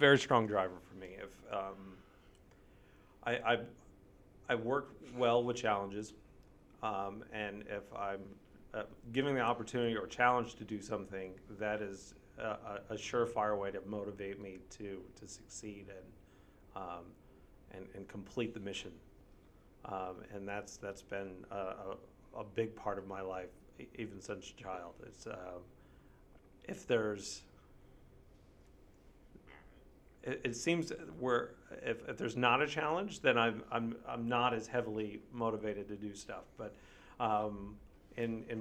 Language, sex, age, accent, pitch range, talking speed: English, male, 40-59, American, 100-115 Hz, 140 wpm